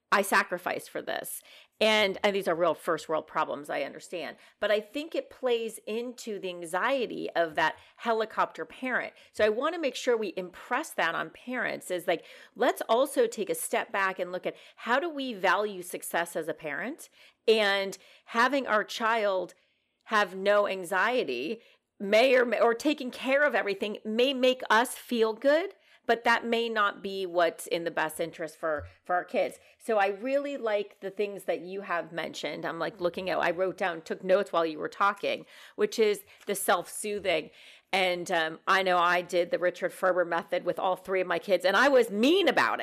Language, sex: English, female